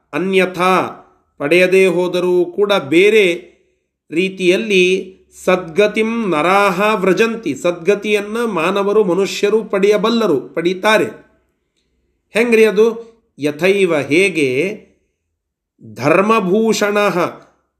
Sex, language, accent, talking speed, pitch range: male, Kannada, native, 65 wpm, 170-215 Hz